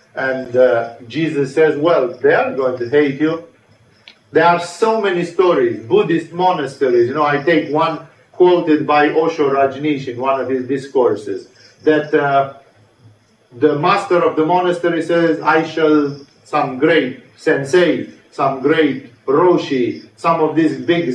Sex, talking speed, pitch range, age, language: male, 150 wpm, 130-165 Hz, 50-69, English